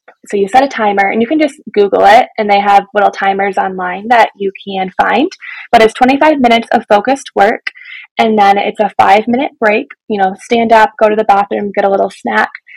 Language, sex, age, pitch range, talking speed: English, female, 20-39, 200-270 Hz, 220 wpm